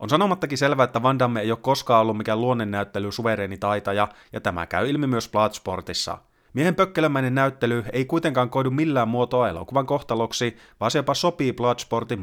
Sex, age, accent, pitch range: male, 30-49, native, 105-130 Hz